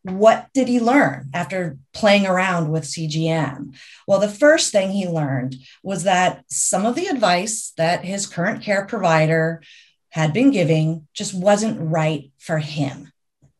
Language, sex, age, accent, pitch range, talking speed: English, female, 30-49, American, 150-200 Hz, 150 wpm